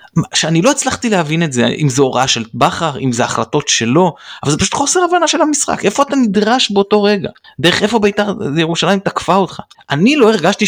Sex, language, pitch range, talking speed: male, Hebrew, 125-205 Hz, 200 wpm